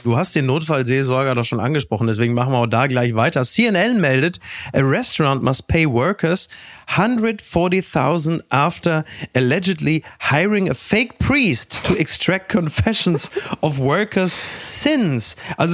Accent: German